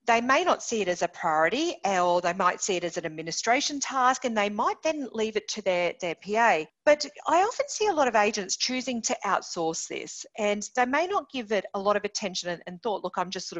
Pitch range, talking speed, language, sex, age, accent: 200-285 Hz, 245 wpm, English, female, 40-59, Australian